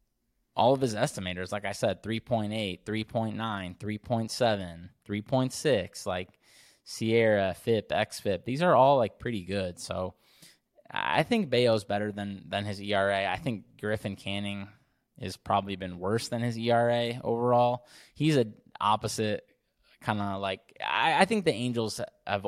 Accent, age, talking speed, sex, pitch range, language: American, 20-39, 145 wpm, male, 100-120 Hz, English